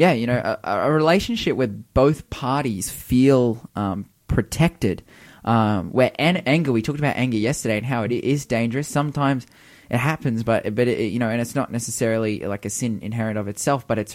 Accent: Australian